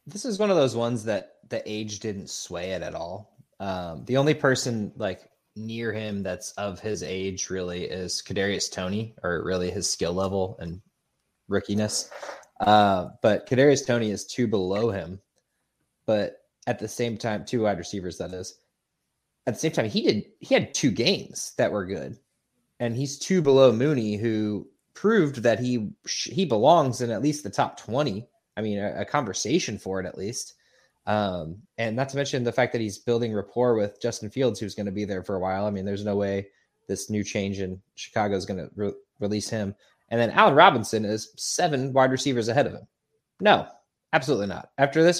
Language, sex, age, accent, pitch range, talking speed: English, male, 20-39, American, 100-120 Hz, 195 wpm